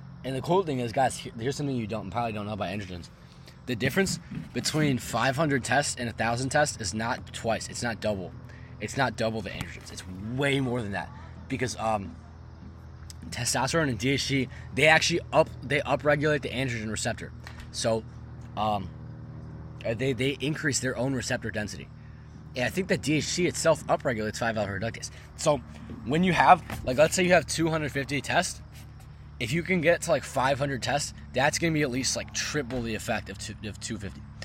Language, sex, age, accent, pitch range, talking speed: English, male, 20-39, American, 110-145 Hz, 175 wpm